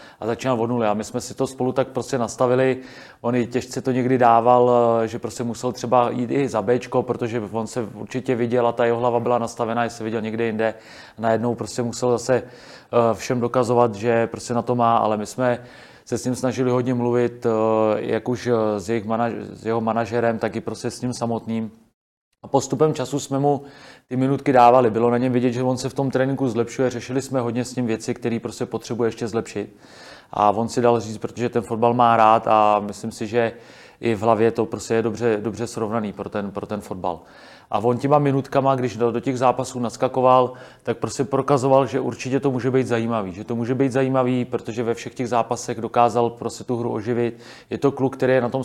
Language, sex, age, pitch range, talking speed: Czech, male, 30-49, 115-125 Hz, 215 wpm